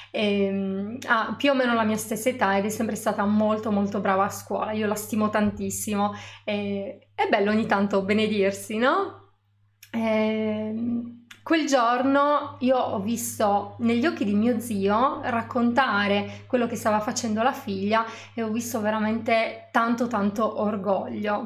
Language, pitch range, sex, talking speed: Italian, 210-235 Hz, female, 150 wpm